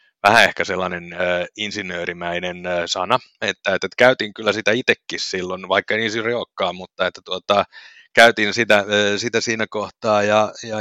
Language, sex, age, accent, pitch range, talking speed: English, male, 30-49, Finnish, 95-110 Hz, 135 wpm